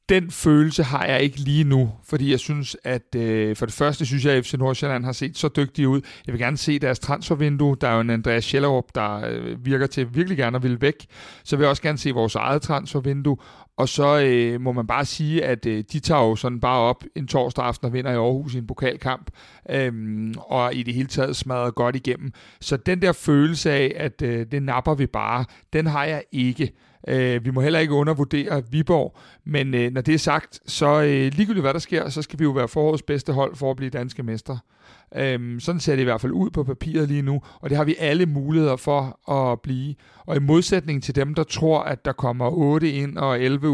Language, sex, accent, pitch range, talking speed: Danish, male, native, 125-150 Hz, 235 wpm